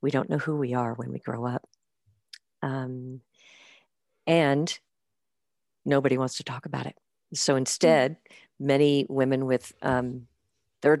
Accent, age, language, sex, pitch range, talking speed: American, 50-69, English, female, 130-155 Hz, 135 wpm